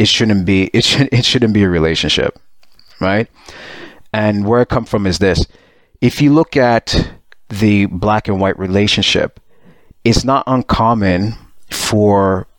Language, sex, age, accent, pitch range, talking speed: English, male, 30-49, American, 95-120 Hz, 150 wpm